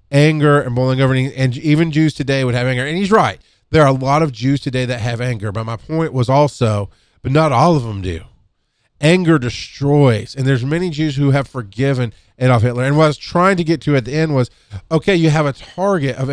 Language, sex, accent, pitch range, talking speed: English, male, American, 120-160 Hz, 230 wpm